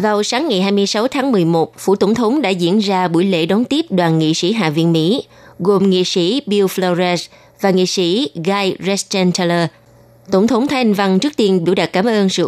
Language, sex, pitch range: Vietnamese, female, 165-210 Hz